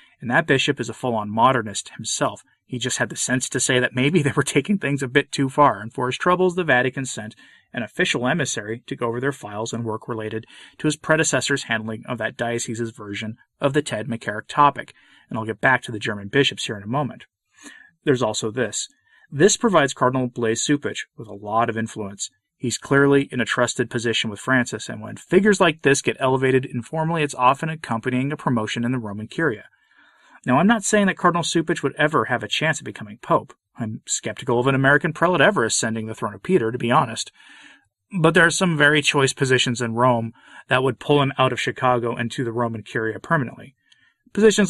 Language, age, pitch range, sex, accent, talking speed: English, 30-49, 115-155 Hz, male, American, 215 wpm